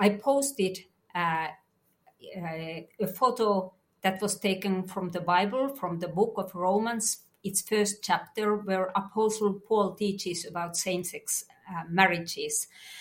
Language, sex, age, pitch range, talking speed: English, female, 50-69, 180-235 Hz, 130 wpm